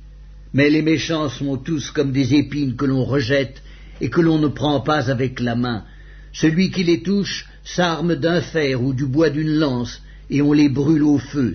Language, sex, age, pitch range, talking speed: English, male, 60-79, 140-170 Hz, 195 wpm